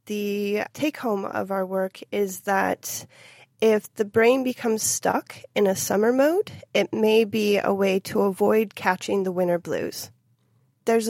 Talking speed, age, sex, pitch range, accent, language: 150 wpm, 30-49, female, 190-230 Hz, American, English